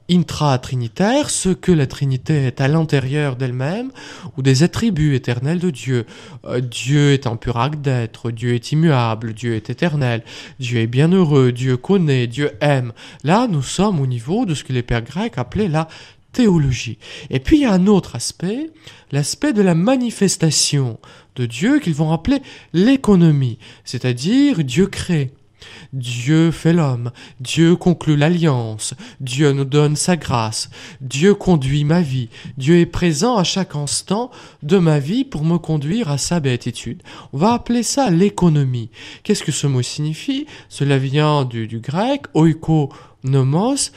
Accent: French